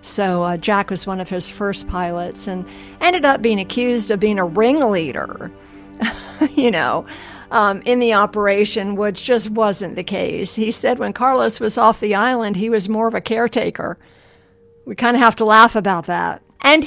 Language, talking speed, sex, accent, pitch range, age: English, 185 wpm, female, American, 180-220 Hz, 50-69